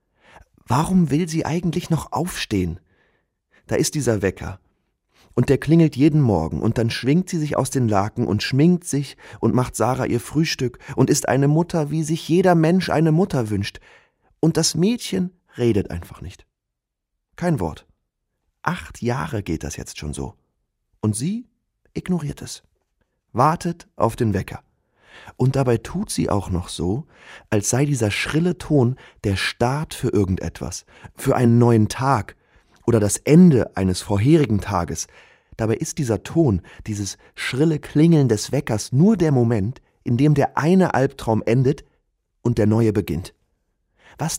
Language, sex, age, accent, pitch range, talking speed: German, male, 30-49, German, 105-160 Hz, 155 wpm